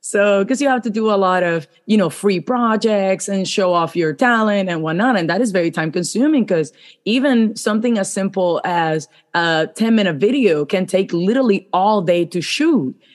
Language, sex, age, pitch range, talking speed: English, female, 30-49, 170-210 Hz, 195 wpm